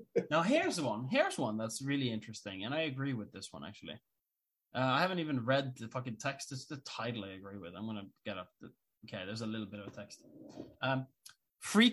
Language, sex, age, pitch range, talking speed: English, male, 20-39, 120-150 Hz, 215 wpm